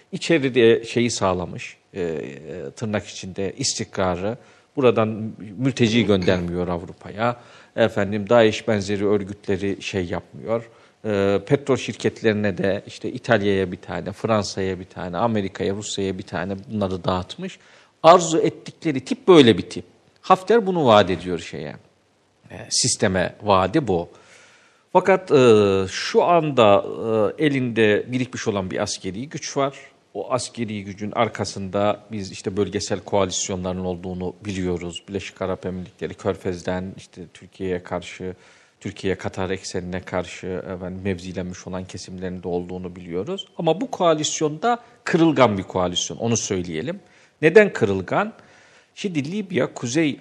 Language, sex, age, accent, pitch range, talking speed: Turkish, male, 50-69, native, 95-130 Hz, 120 wpm